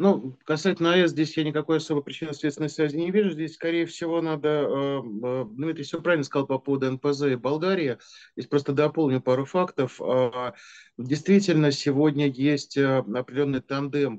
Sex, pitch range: male, 125-150 Hz